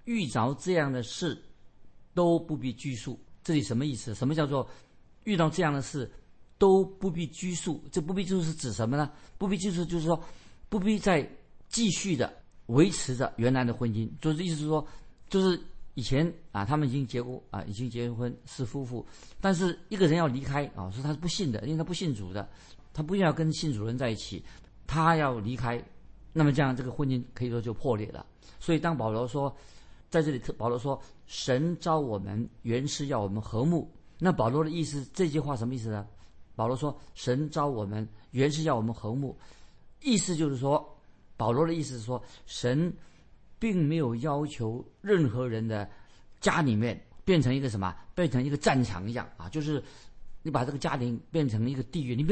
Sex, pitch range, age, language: male, 120-160 Hz, 50-69, Chinese